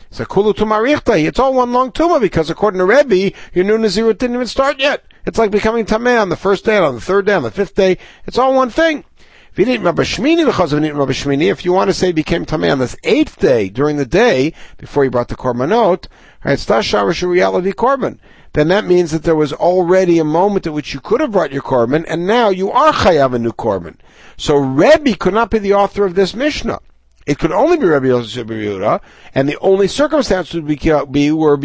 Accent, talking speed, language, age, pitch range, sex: American, 205 wpm, English, 60-79, 140-200 Hz, male